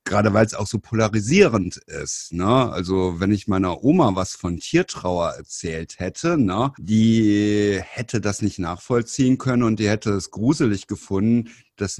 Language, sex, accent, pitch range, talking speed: German, male, German, 95-120 Hz, 160 wpm